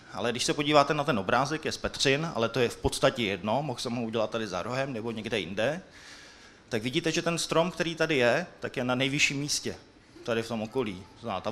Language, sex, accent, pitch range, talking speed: Czech, male, native, 110-135 Hz, 235 wpm